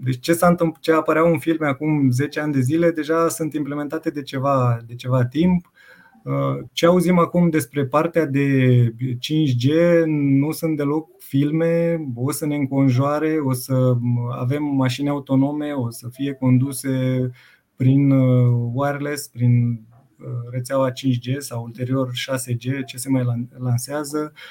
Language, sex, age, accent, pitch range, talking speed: Romanian, male, 20-39, native, 125-150 Hz, 140 wpm